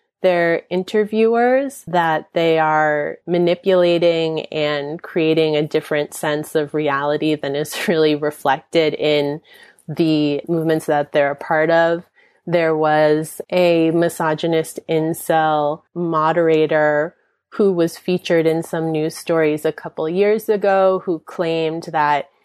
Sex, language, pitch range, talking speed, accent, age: female, English, 155-190 Hz, 120 wpm, American, 30-49